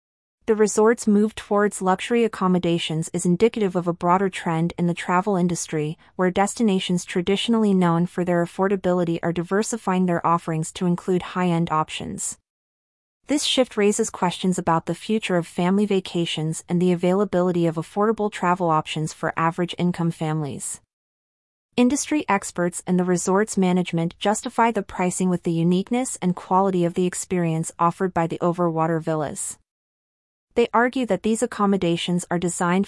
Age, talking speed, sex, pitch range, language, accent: 30-49, 145 wpm, female, 170-205 Hz, English, American